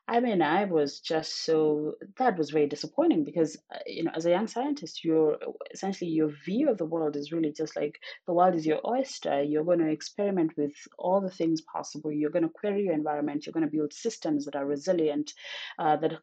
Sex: female